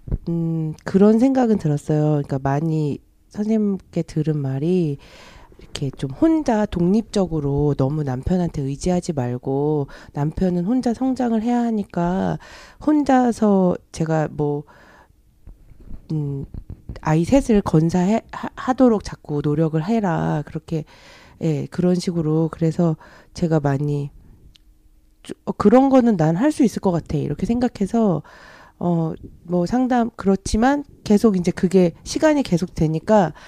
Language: Korean